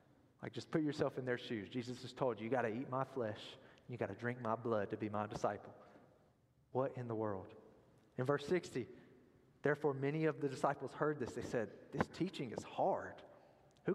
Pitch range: 125-150 Hz